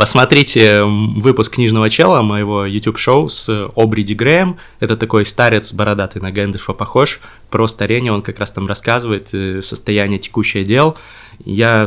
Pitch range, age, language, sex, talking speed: 100-115 Hz, 20-39, Russian, male, 135 wpm